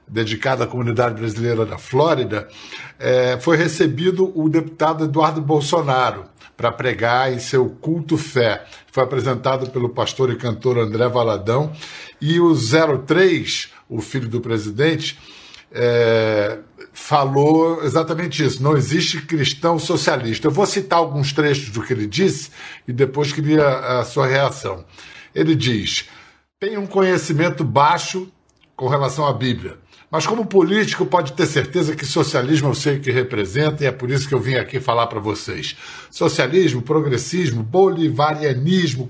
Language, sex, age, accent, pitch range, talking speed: Portuguese, male, 60-79, Brazilian, 125-160 Hz, 140 wpm